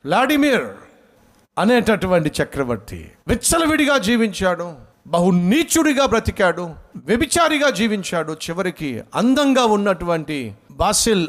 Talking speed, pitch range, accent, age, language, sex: 75 wpm, 110-180 Hz, native, 50-69, Telugu, male